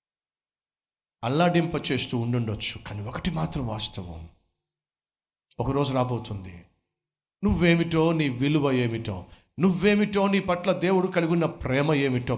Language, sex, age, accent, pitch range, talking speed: Telugu, male, 50-69, native, 120-180 Hz, 60 wpm